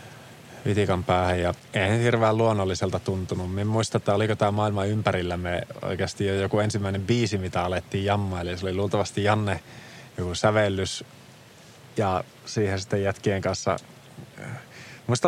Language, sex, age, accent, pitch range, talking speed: Finnish, male, 20-39, native, 95-115 Hz, 135 wpm